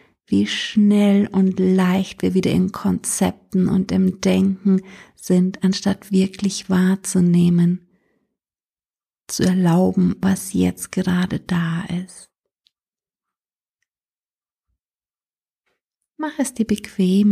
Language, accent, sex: German, German, female